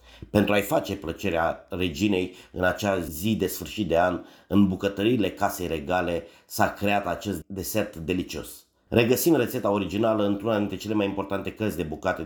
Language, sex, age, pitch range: English, male, 30-49, 90-105 Hz